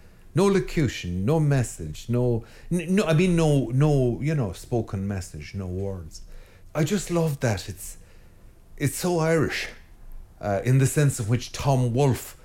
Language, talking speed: English, 155 wpm